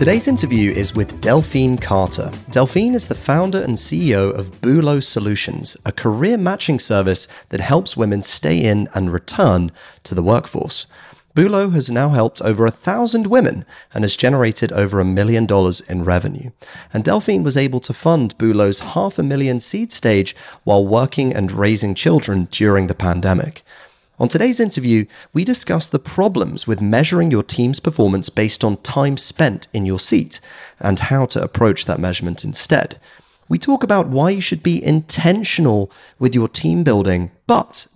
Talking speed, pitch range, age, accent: 165 wpm, 100-145 Hz, 30-49, British